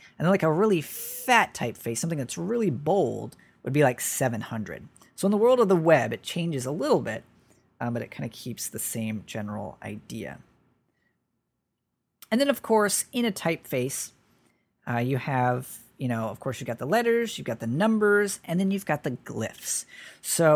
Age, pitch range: 40-59, 125-195 Hz